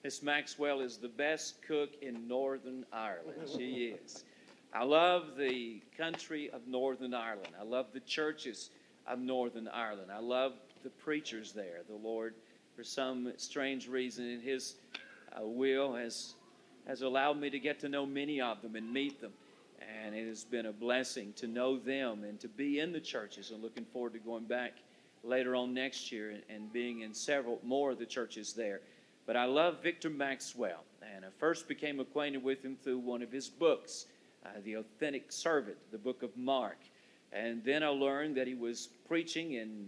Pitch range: 115-140 Hz